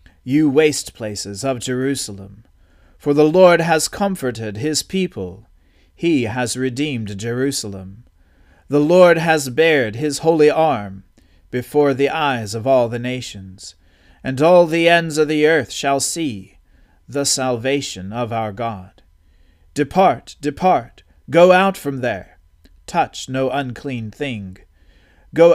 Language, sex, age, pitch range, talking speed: English, male, 40-59, 95-145 Hz, 130 wpm